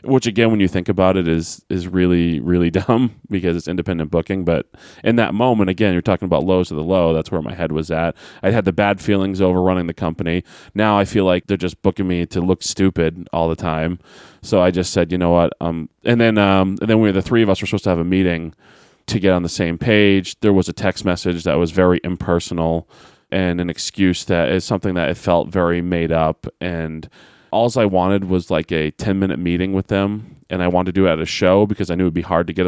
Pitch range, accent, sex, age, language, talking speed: 85-95 Hz, American, male, 20-39, English, 250 wpm